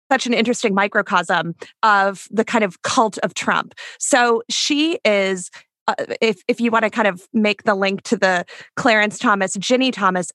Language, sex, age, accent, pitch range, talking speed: English, female, 30-49, American, 200-245 Hz, 180 wpm